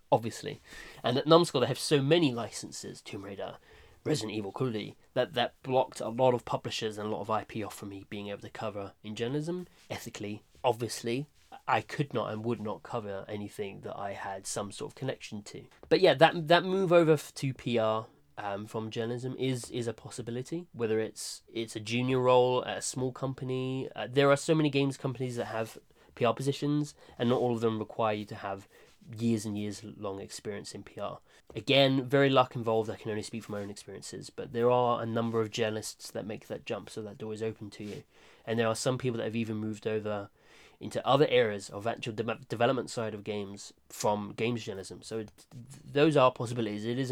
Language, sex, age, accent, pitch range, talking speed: English, male, 20-39, British, 110-130 Hz, 210 wpm